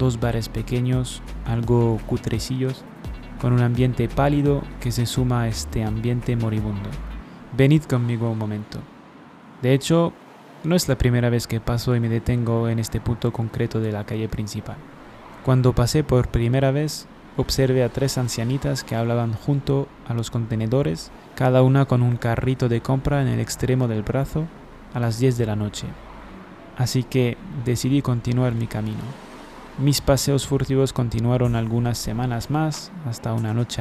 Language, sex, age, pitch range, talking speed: French, male, 20-39, 115-135 Hz, 160 wpm